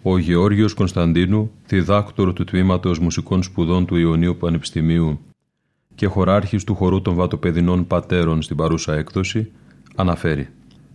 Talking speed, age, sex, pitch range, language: 120 wpm, 30-49, male, 85-100 Hz, Greek